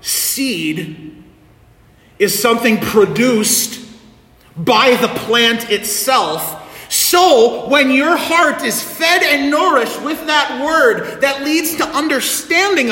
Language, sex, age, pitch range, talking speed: English, male, 40-59, 230-330 Hz, 105 wpm